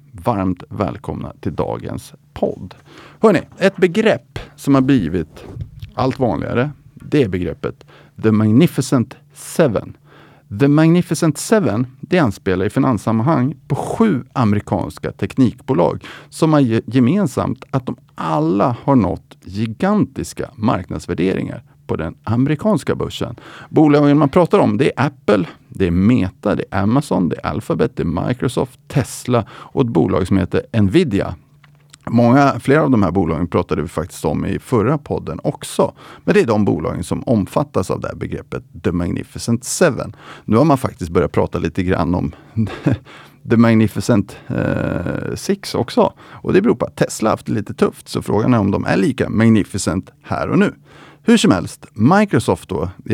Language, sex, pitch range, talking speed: Swedish, male, 105-145 Hz, 160 wpm